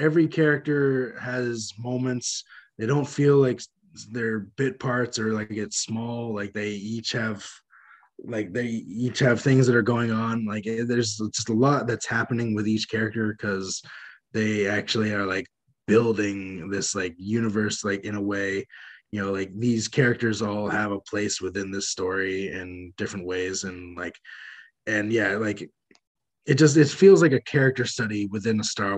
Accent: American